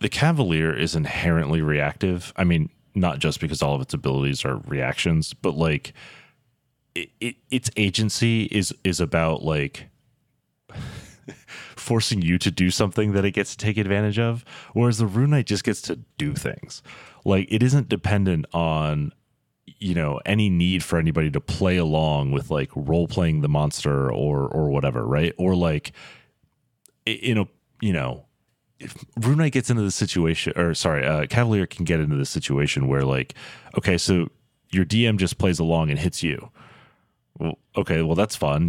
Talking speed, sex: 165 wpm, male